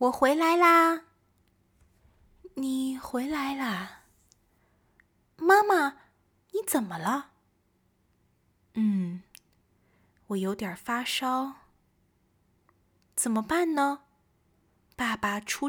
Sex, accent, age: female, native, 20-39